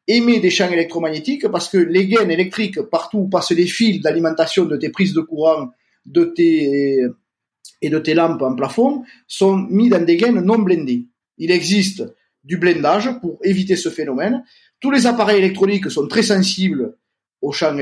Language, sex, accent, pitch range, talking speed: French, male, French, 150-225 Hz, 175 wpm